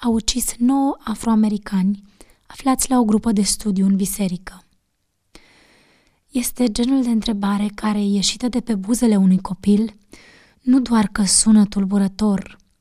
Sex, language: female, Romanian